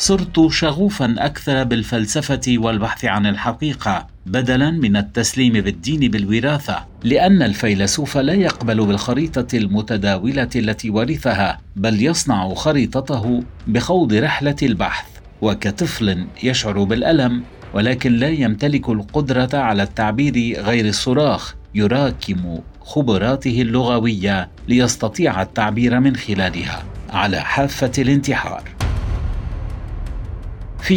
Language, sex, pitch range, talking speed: Arabic, male, 100-135 Hz, 95 wpm